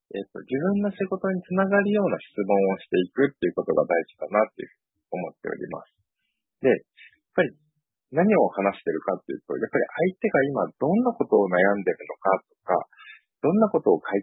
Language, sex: Japanese, male